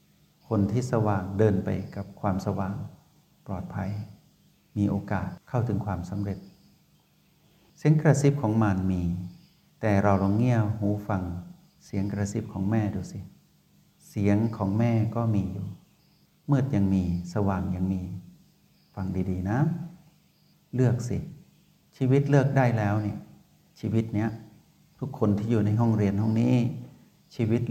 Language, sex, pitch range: Thai, male, 100-130 Hz